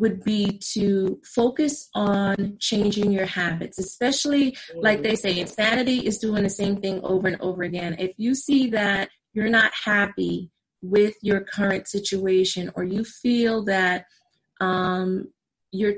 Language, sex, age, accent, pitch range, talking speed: English, female, 30-49, American, 195-245 Hz, 145 wpm